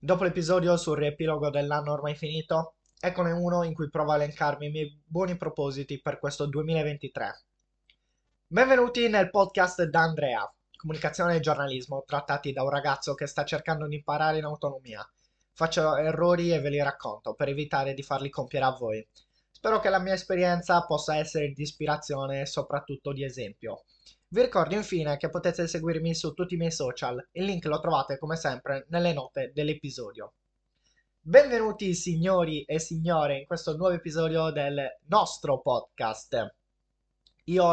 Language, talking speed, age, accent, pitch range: Italian, 155 wpm, 20-39, native, 145-170 Hz